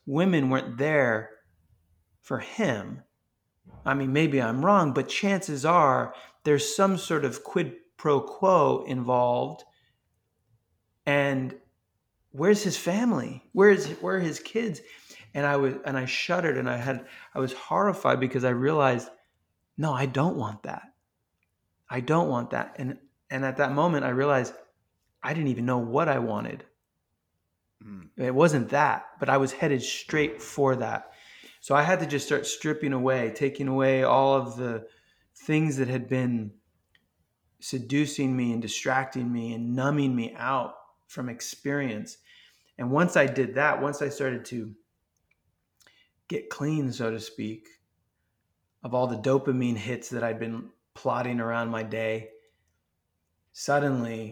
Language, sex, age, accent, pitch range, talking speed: English, male, 30-49, American, 110-140 Hz, 150 wpm